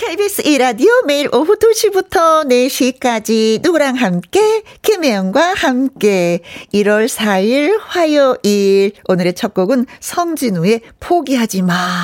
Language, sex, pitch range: Korean, female, 180-270 Hz